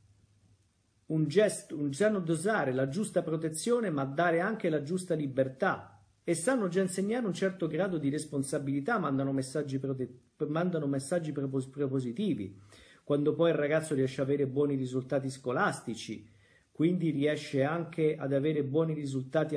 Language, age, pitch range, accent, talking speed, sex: Italian, 40-59, 125-175 Hz, native, 145 wpm, male